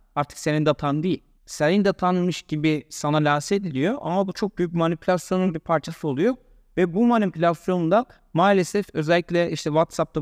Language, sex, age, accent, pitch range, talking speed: Turkish, male, 60-79, native, 155-195 Hz, 170 wpm